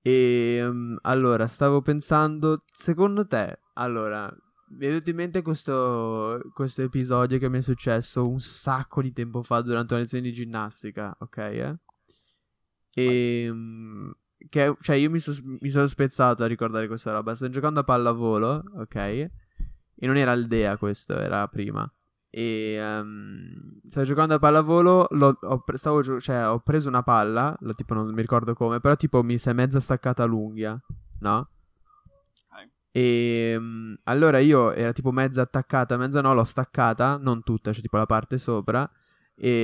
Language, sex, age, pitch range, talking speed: Italian, male, 10-29, 115-140 Hz, 160 wpm